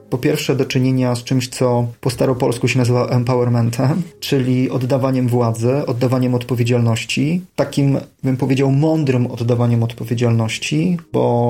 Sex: male